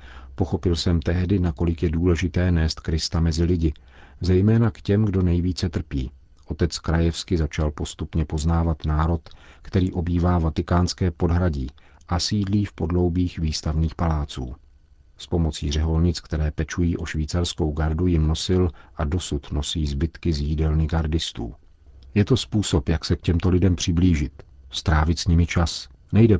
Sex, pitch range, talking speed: male, 75-90 Hz, 145 wpm